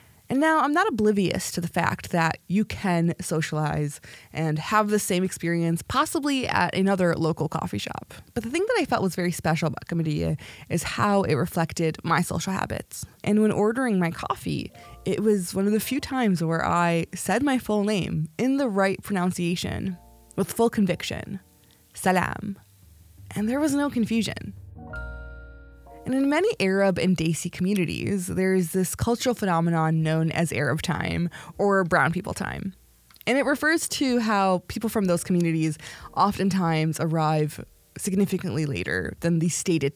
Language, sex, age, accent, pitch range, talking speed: English, female, 20-39, American, 155-205 Hz, 160 wpm